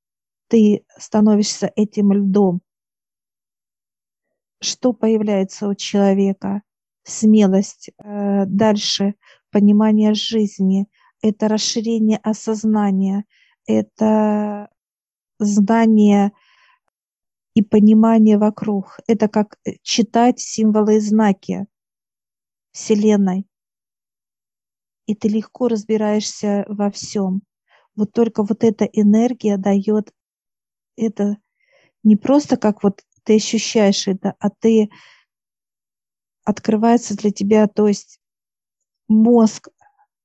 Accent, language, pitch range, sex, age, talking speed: native, Russian, 200-220 Hz, female, 50-69, 80 wpm